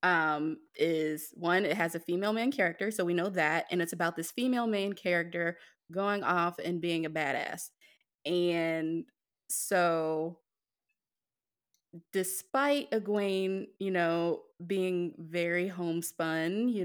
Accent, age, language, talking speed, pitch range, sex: American, 20-39, English, 130 wpm, 165-195 Hz, female